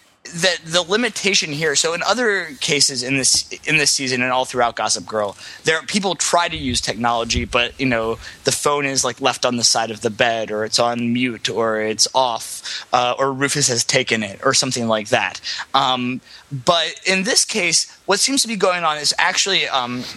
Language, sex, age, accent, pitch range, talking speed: English, male, 20-39, American, 115-155 Hz, 210 wpm